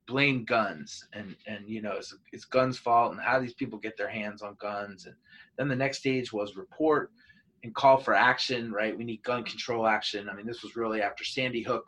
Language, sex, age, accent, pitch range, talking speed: English, male, 20-39, American, 105-140 Hz, 225 wpm